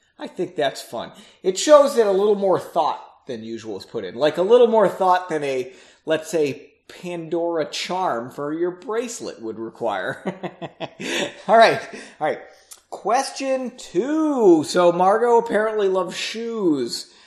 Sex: male